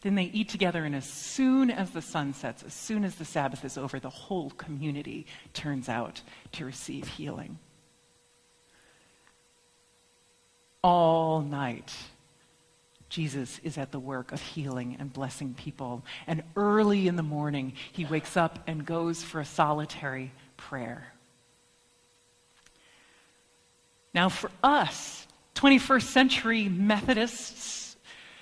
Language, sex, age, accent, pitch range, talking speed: English, female, 40-59, American, 150-235 Hz, 120 wpm